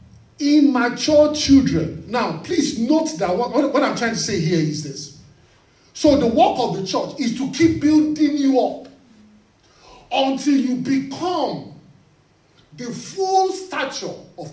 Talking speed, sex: 140 wpm, male